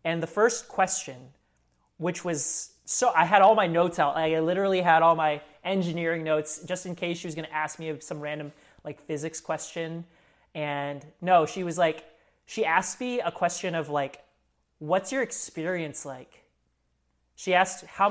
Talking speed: 175 wpm